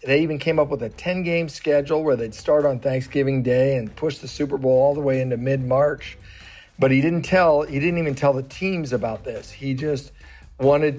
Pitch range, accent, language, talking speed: 130-155 Hz, American, English, 225 wpm